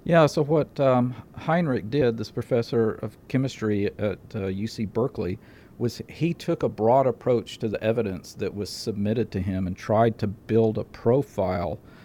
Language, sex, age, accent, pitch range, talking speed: English, male, 50-69, American, 110-125 Hz, 170 wpm